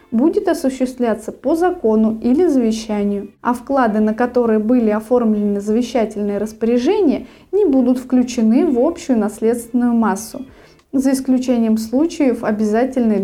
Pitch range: 220-265 Hz